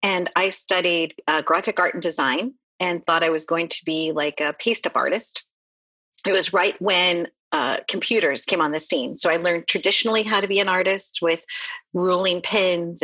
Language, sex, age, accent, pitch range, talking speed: English, female, 40-59, American, 165-210 Hz, 190 wpm